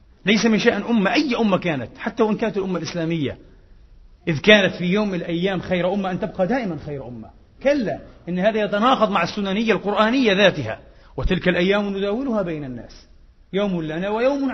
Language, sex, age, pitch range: Arabic, male, 40-59, 170-225 Hz